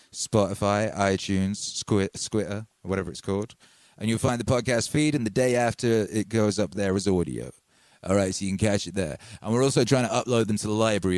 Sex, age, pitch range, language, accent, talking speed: male, 30-49, 95-115 Hz, English, British, 220 wpm